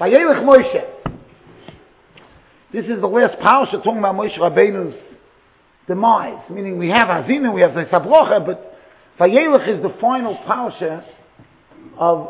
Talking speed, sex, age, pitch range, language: 120 wpm, male, 50-69, 180-265 Hz, English